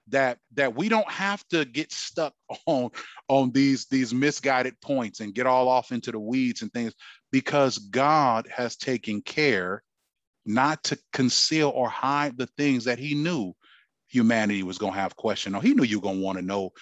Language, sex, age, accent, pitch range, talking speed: English, male, 30-49, American, 125-175 Hz, 195 wpm